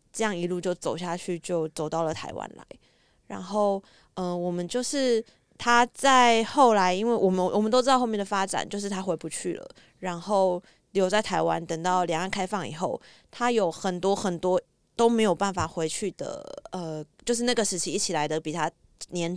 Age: 20-39